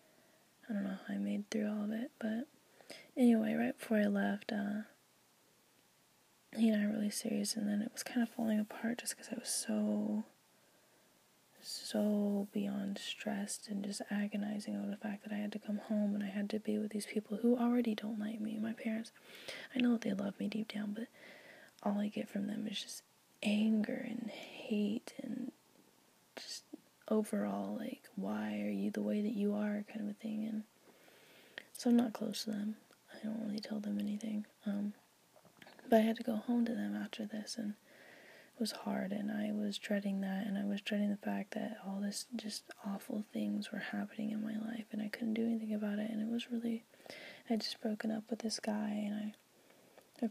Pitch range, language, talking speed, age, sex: 210-230 Hz, English, 205 wpm, 20-39, female